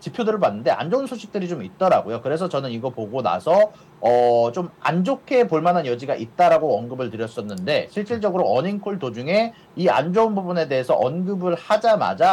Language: Korean